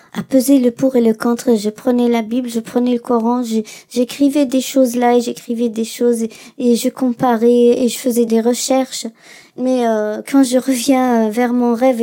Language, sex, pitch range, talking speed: French, male, 225-260 Hz, 205 wpm